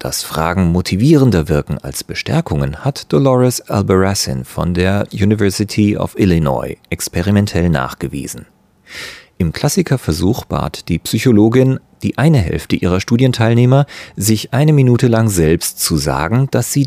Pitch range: 80-125 Hz